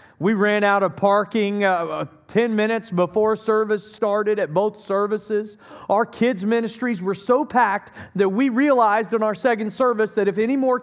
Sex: male